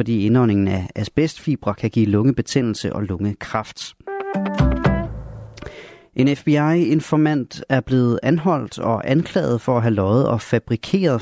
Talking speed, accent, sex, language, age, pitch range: 120 wpm, native, male, Danish, 30-49, 105-135 Hz